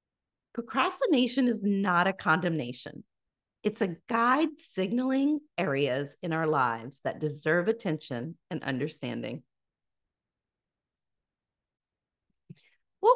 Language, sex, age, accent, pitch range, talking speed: English, female, 40-59, American, 160-255 Hz, 85 wpm